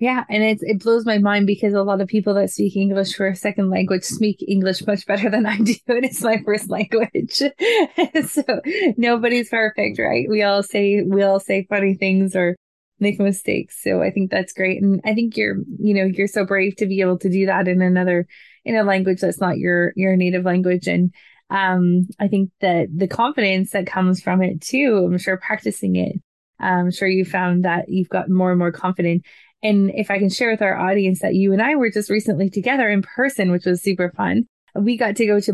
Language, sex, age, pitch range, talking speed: English, female, 20-39, 185-215 Hz, 220 wpm